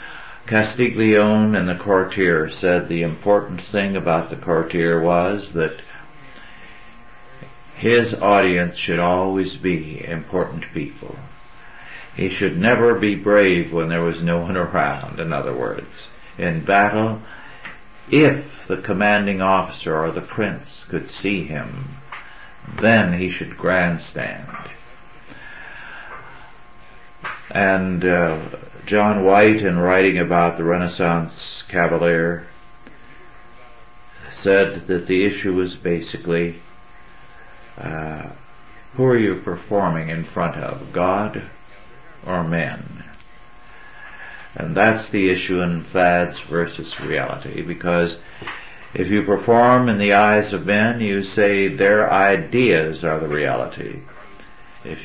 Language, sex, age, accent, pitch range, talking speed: English, male, 60-79, American, 85-105 Hz, 110 wpm